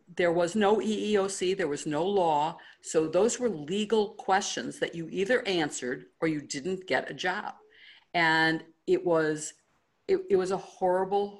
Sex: female